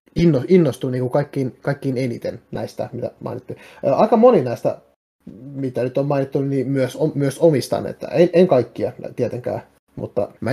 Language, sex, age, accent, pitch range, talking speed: Finnish, male, 30-49, native, 125-160 Hz, 150 wpm